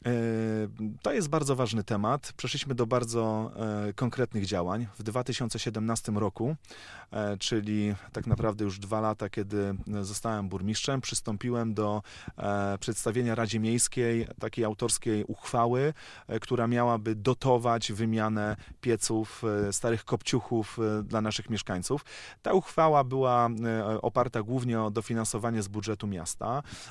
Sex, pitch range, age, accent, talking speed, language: male, 110-125 Hz, 30-49, native, 110 wpm, Polish